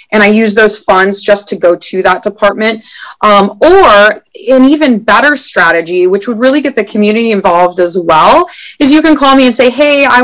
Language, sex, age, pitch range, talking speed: English, female, 30-49, 190-245 Hz, 205 wpm